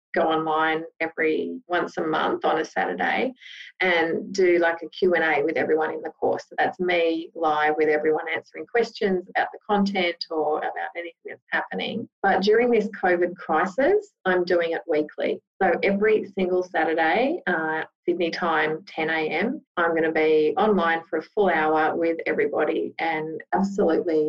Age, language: 30-49, English